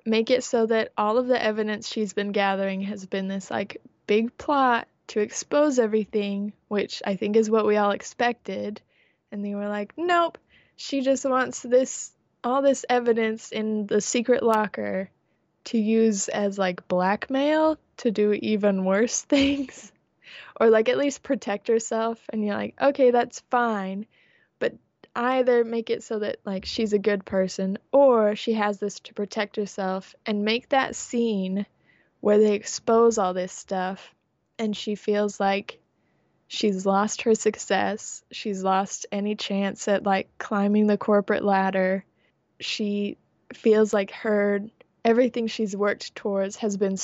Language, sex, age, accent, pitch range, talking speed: English, female, 20-39, American, 200-235 Hz, 155 wpm